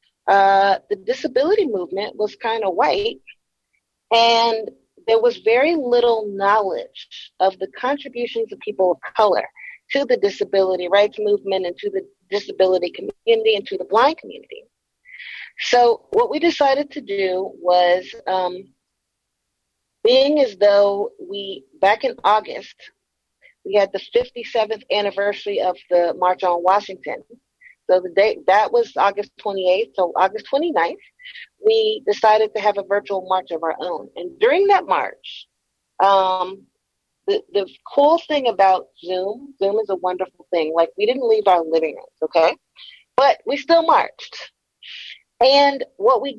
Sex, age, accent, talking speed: female, 40-59, American, 145 wpm